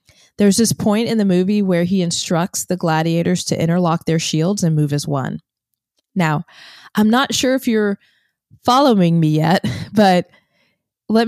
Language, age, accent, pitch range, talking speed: English, 20-39, American, 170-205 Hz, 160 wpm